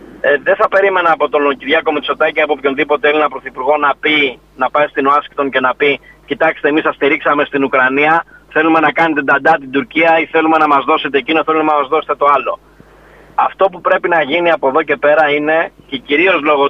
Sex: male